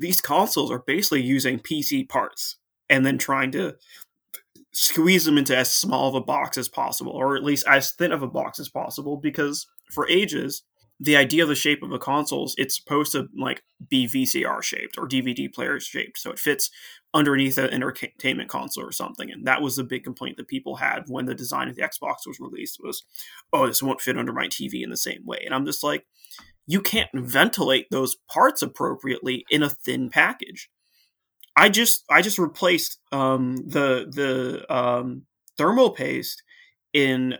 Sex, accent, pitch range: male, American, 130-180 Hz